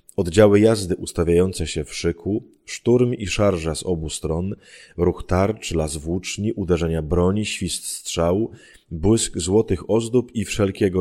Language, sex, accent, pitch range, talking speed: Polish, male, native, 85-110 Hz, 135 wpm